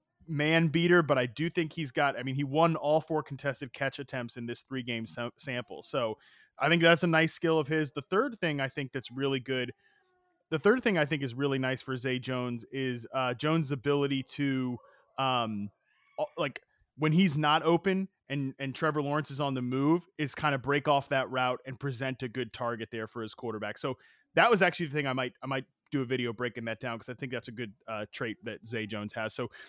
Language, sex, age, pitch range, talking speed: English, male, 30-49, 125-155 Hz, 230 wpm